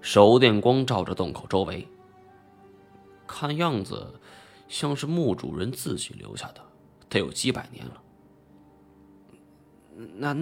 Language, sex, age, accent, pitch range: Chinese, male, 20-39, native, 100-145 Hz